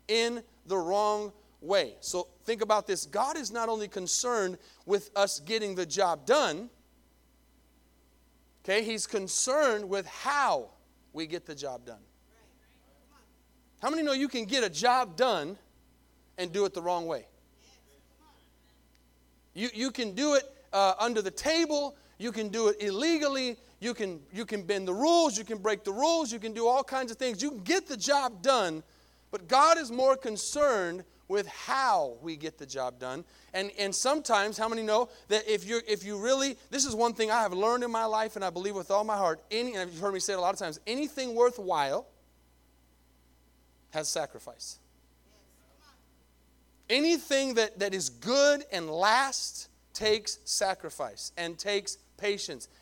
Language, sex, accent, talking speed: English, male, American, 170 wpm